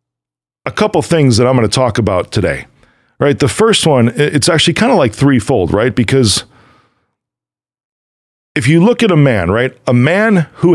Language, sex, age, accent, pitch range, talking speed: English, male, 40-59, American, 125-175 Hz, 180 wpm